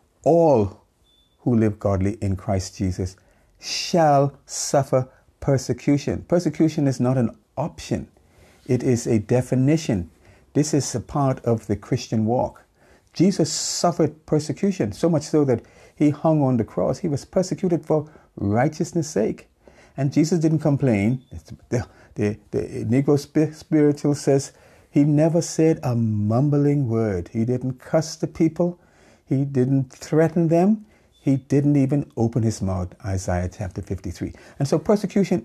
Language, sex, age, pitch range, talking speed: English, male, 50-69, 105-150 Hz, 135 wpm